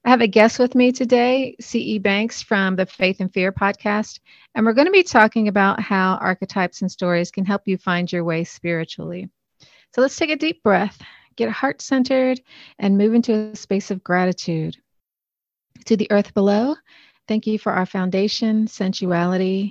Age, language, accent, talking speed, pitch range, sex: 40-59, English, American, 175 wpm, 185-220 Hz, female